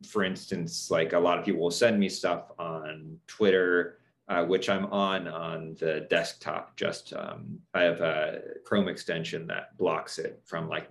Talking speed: 175 wpm